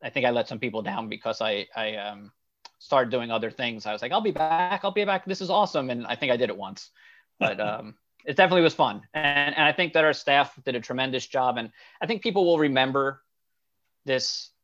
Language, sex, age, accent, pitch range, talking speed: English, male, 30-49, American, 115-135 Hz, 240 wpm